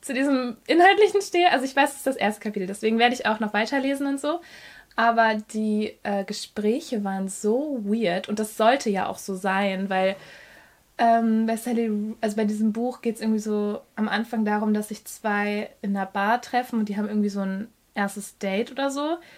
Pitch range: 200-245 Hz